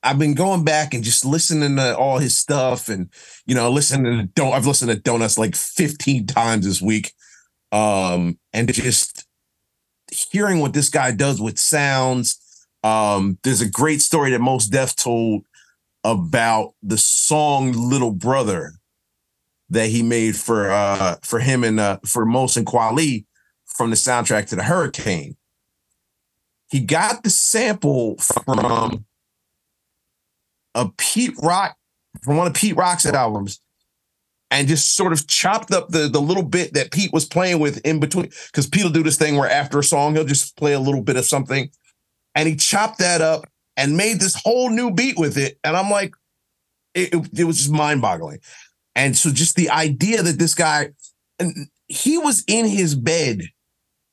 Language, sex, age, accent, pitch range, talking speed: English, male, 40-59, American, 120-165 Hz, 170 wpm